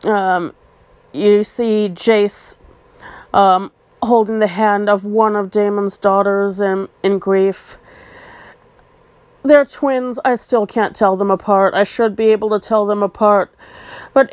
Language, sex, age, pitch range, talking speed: English, female, 30-49, 195-255 Hz, 140 wpm